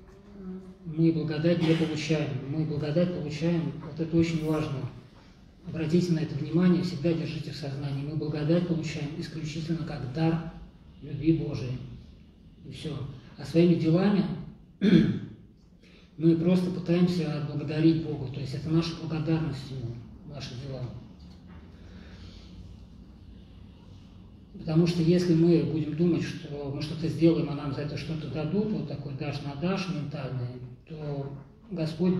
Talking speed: 130 wpm